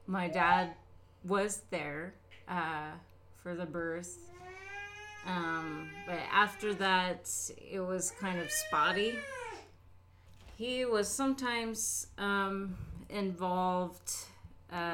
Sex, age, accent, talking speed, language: female, 30-49, American, 90 wpm, English